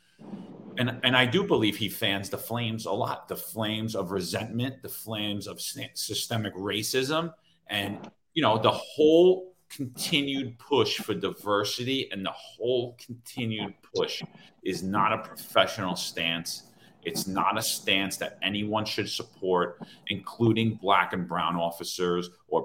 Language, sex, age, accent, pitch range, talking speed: English, male, 40-59, American, 95-120 Hz, 140 wpm